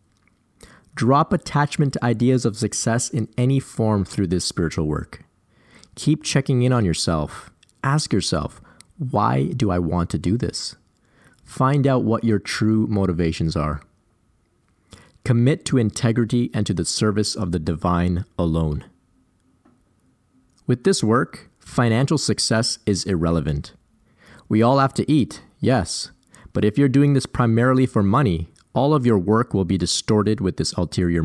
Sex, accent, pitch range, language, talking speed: male, American, 90-125 Hz, English, 145 wpm